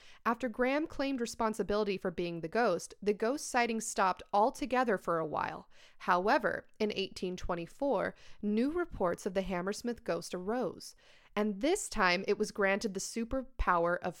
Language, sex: English, female